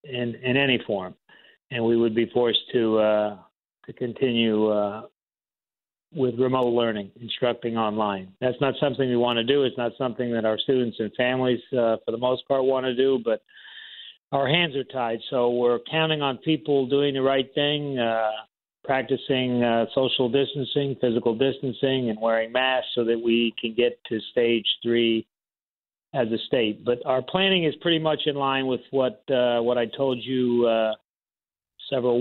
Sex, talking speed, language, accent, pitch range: male, 175 wpm, English, American, 115-135 Hz